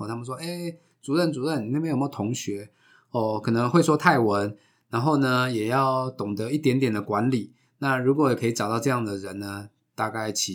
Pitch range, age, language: 105-130 Hz, 20-39, Chinese